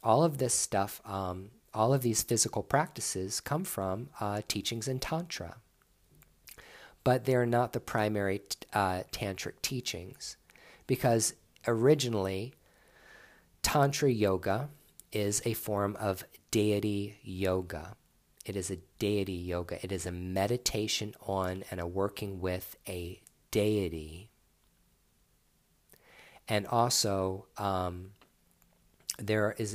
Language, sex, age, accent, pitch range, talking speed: English, male, 40-59, American, 95-110 Hz, 110 wpm